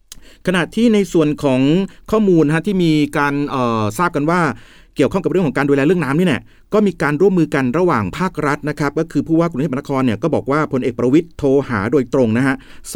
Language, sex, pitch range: Thai, male, 125-160 Hz